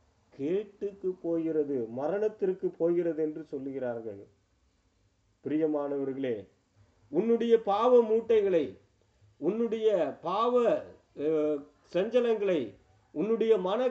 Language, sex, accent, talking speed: Tamil, male, native, 65 wpm